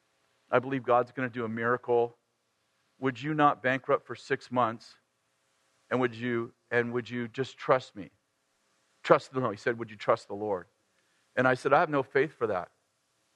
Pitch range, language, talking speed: 110-135 Hz, English, 185 wpm